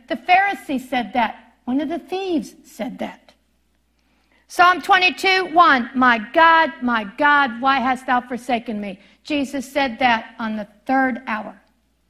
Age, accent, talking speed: 50-69, American, 145 wpm